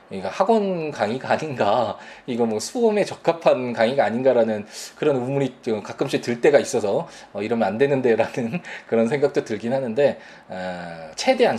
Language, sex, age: Korean, male, 20-39